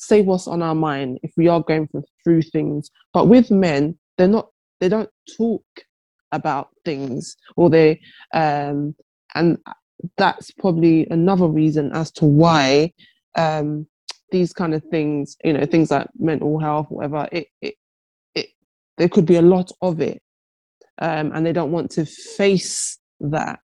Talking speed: 155 wpm